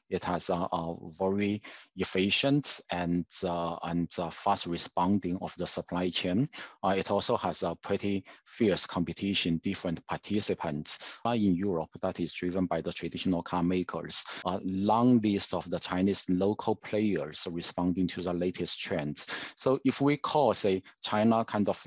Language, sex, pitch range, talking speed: English, male, 90-110 Hz, 155 wpm